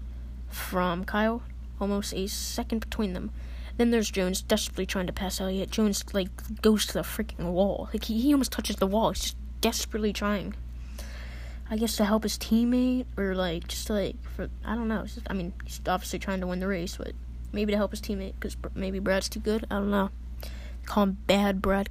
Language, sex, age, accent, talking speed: English, female, 10-29, American, 215 wpm